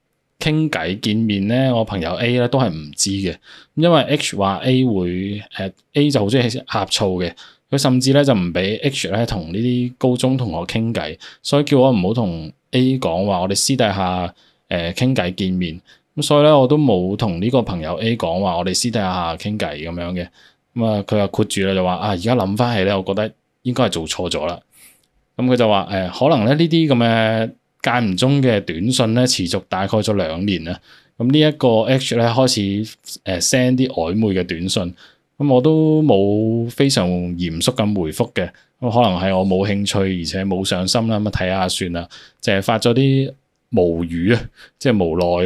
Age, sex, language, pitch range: 20-39, male, Chinese, 95-125 Hz